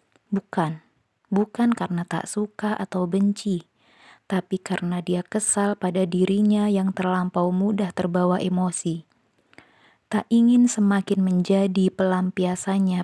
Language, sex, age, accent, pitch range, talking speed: Indonesian, female, 20-39, native, 180-200 Hz, 105 wpm